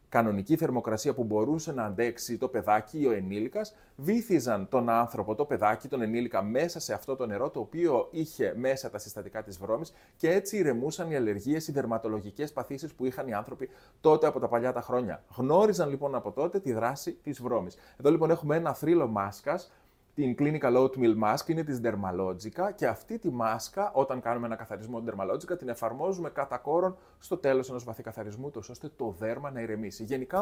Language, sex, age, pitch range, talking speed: Greek, male, 30-49, 110-145 Hz, 185 wpm